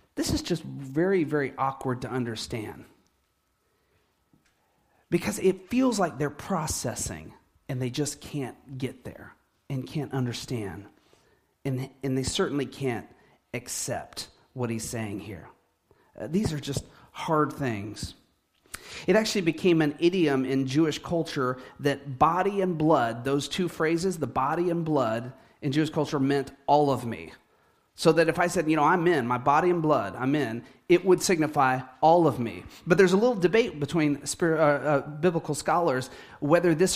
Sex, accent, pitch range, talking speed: male, American, 125-165 Hz, 160 wpm